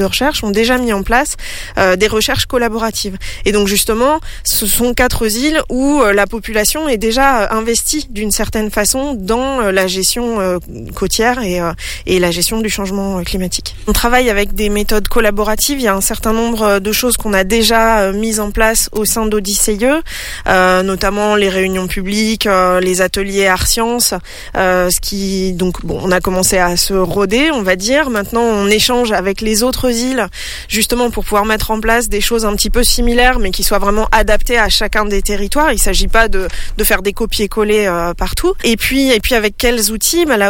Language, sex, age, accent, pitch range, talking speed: French, female, 20-39, French, 190-230 Hz, 205 wpm